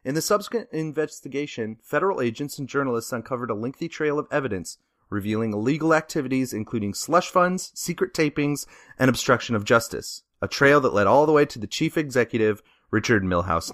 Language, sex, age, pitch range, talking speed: English, male, 30-49, 115-165 Hz, 170 wpm